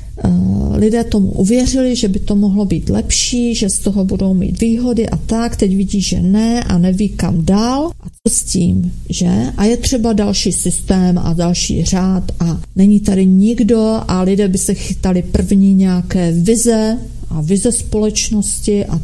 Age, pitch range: 40-59, 180-215 Hz